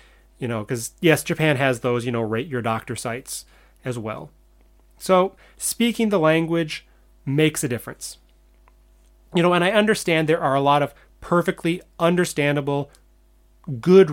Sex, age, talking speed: male, 30-49, 150 wpm